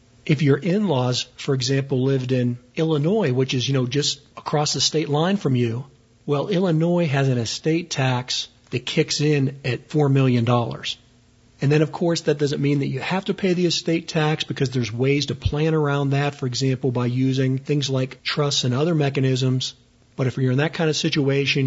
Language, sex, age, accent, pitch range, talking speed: English, male, 50-69, American, 125-150 Hz, 195 wpm